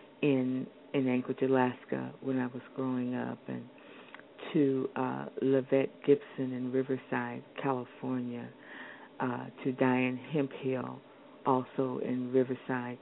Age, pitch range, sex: 50-69, 125-140 Hz, female